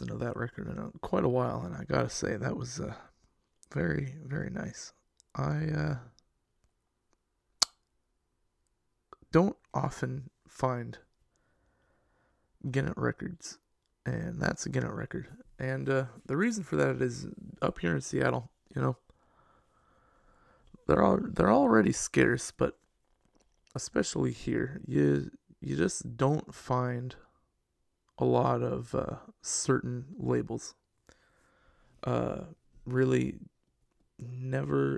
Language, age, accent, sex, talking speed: English, 20-39, American, male, 110 wpm